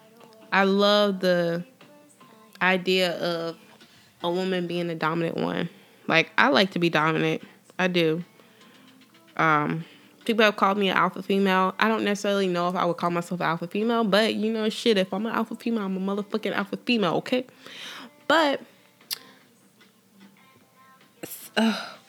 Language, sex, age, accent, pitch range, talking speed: English, female, 20-39, American, 180-220 Hz, 150 wpm